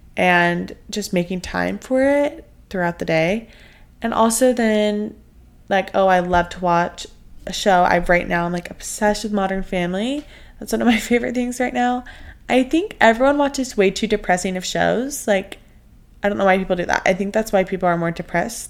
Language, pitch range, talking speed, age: English, 175-220 Hz, 200 wpm, 20-39